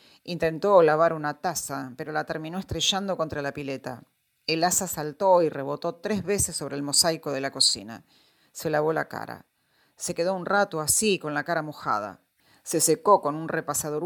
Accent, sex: Argentinian, female